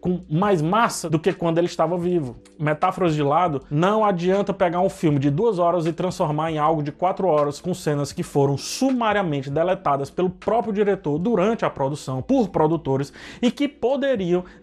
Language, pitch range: Portuguese, 155-205 Hz